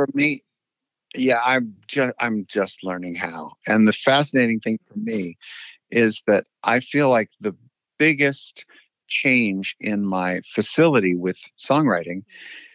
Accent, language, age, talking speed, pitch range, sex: American, English, 50-69, 130 wpm, 105-135 Hz, male